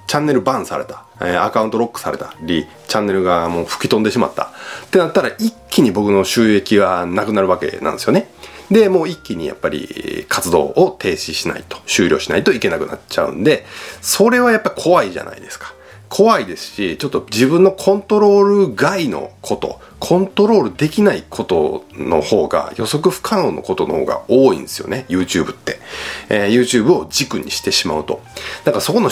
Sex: male